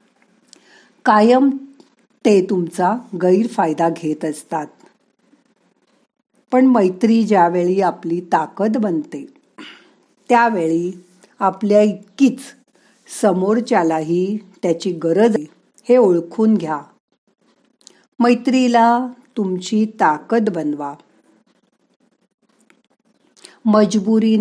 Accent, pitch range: native, 180-240 Hz